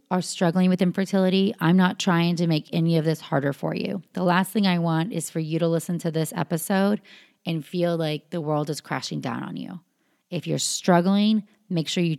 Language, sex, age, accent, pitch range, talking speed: English, female, 30-49, American, 165-200 Hz, 215 wpm